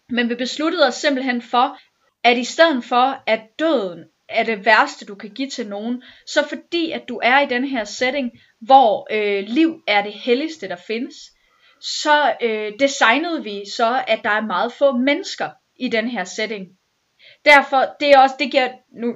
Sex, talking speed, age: female, 185 wpm, 30-49